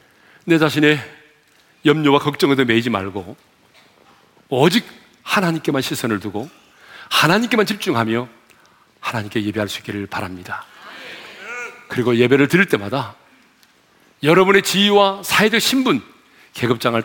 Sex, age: male, 40-59